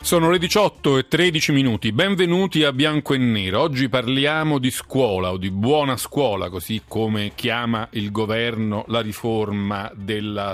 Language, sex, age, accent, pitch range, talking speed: Italian, male, 40-59, native, 105-150 Hz, 155 wpm